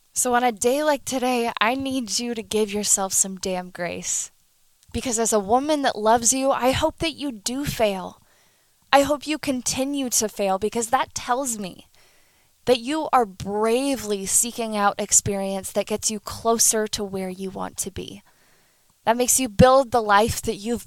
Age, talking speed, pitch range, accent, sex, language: 10-29, 180 wpm, 200-260 Hz, American, female, English